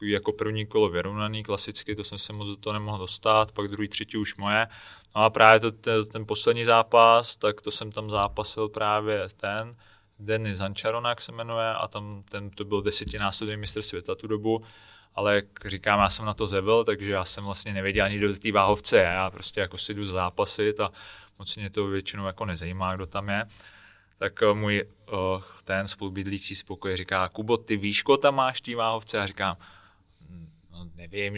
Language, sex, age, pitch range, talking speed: Czech, male, 20-39, 100-110 Hz, 180 wpm